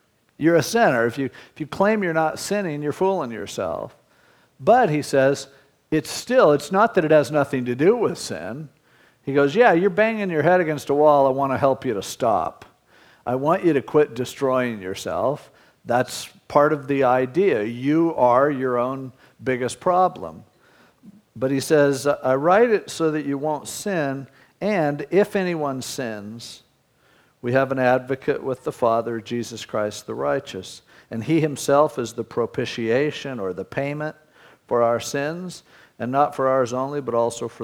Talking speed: 175 wpm